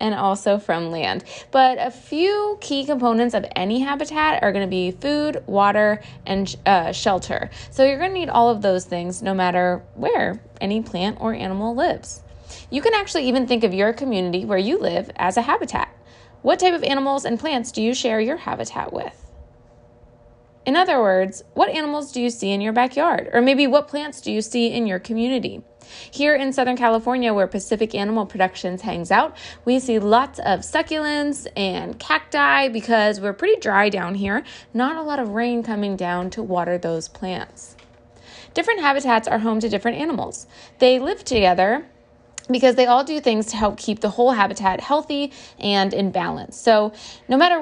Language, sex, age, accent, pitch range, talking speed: English, female, 20-39, American, 195-270 Hz, 185 wpm